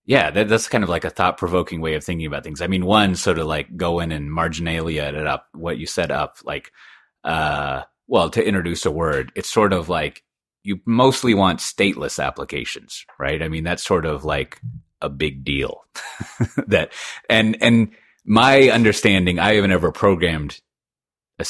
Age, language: 30-49, English